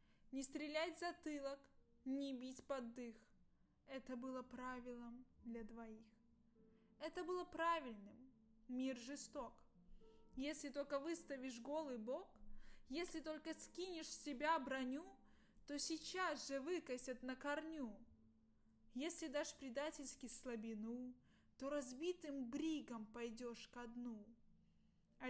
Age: 20-39